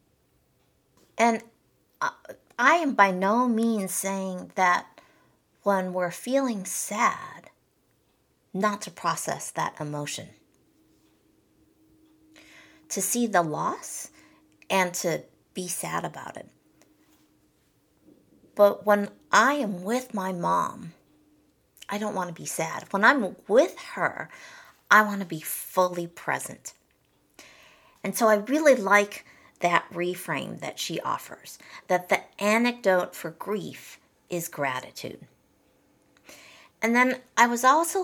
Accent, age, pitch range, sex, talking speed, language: American, 50-69, 185-240 Hz, female, 115 wpm, English